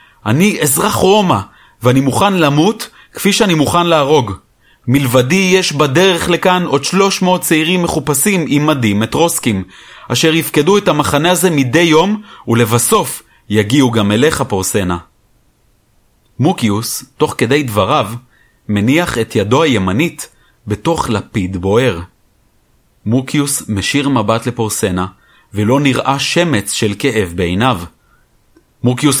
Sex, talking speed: male, 115 wpm